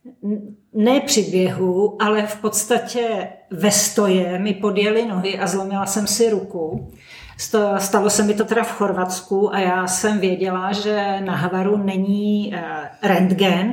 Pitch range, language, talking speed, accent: 190-215 Hz, Czech, 140 wpm, native